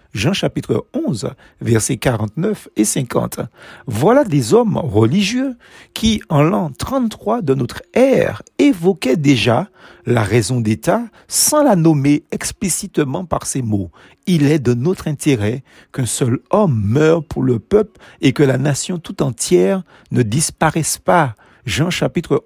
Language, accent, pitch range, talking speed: French, French, 125-185 Hz, 140 wpm